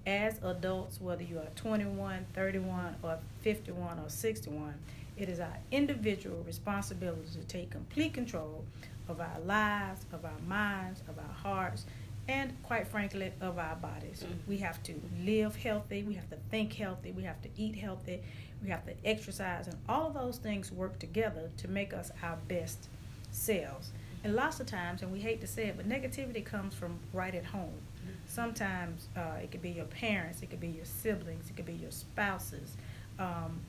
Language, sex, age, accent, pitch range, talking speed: English, female, 40-59, American, 105-170 Hz, 180 wpm